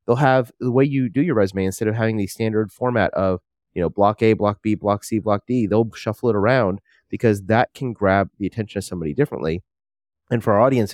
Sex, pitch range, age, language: male, 95-115 Hz, 30-49, English